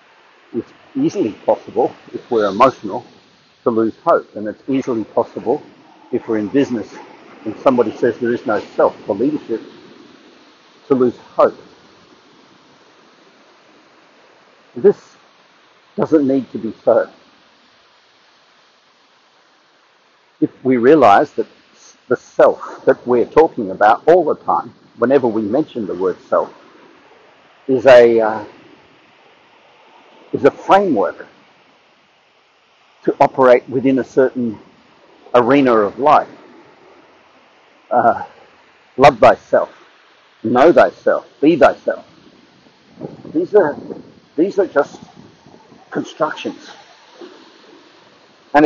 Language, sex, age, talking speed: English, male, 60-79, 100 wpm